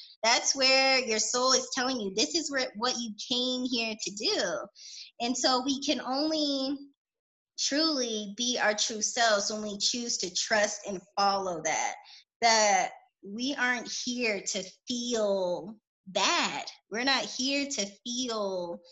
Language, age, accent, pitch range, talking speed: English, 20-39, American, 195-250 Hz, 145 wpm